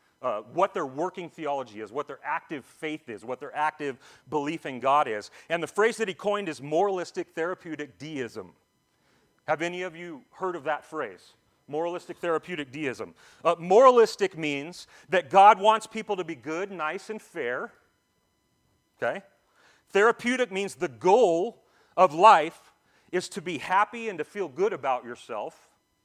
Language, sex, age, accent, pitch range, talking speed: English, male, 40-59, American, 155-205 Hz, 160 wpm